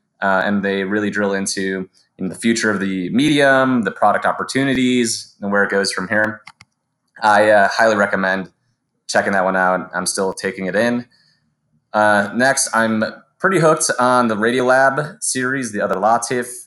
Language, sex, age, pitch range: English, male, 20-39, 95-115 Hz